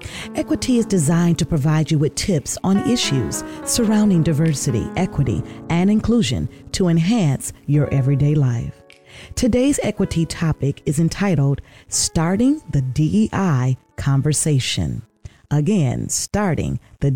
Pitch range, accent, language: 135-190 Hz, American, English